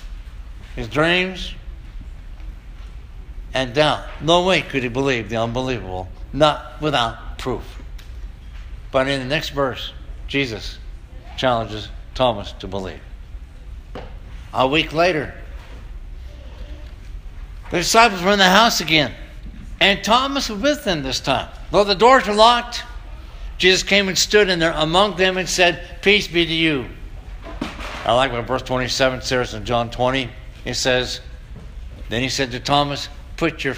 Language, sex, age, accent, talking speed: English, male, 60-79, American, 140 wpm